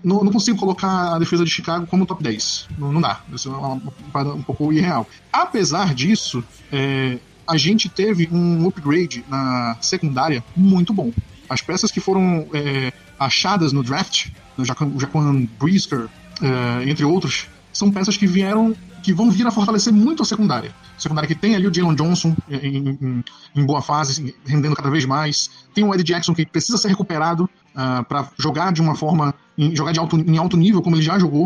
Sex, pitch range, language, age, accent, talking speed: male, 145-190 Hz, Portuguese, 20-39, Brazilian, 185 wpm